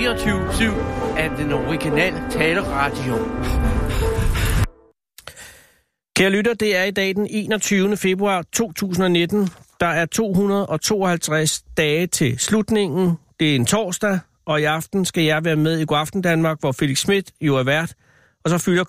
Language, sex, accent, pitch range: Danish, male, native, 130-180 Hz